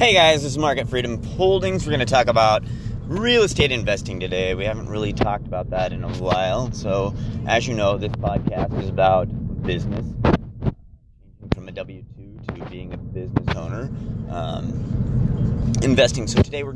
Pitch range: 110-125 Hz